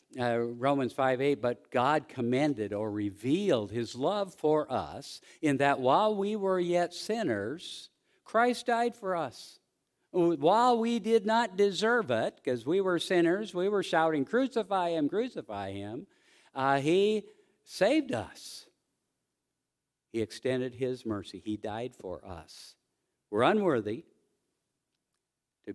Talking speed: 130 wpm